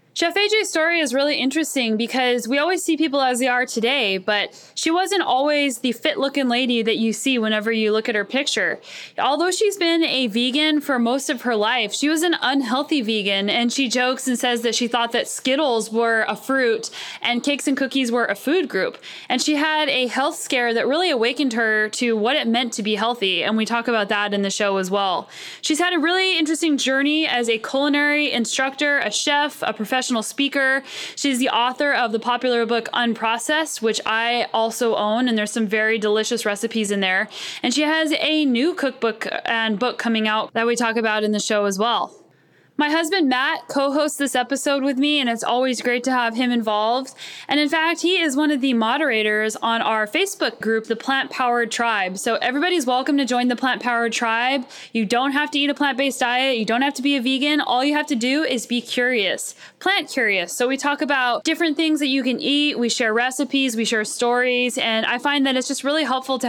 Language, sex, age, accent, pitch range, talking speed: English, female, 10-29, American, 230-285 Hz, 215 wpm